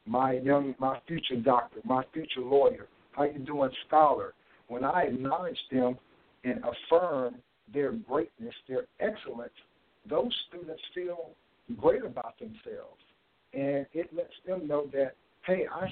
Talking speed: 135 wpm